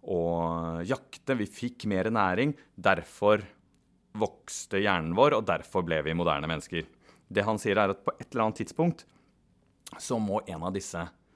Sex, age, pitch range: male, 30-49, 90-115 Hz